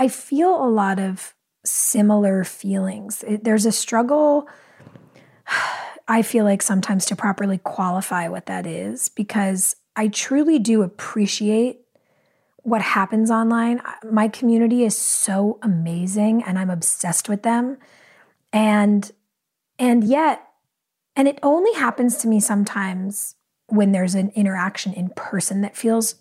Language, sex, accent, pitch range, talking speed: English, female, American, 195-235 Hz, 130 wpm